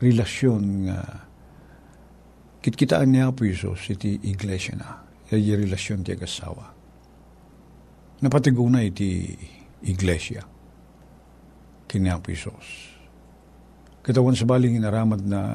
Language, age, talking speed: Filipino, 50-69, 105 wpm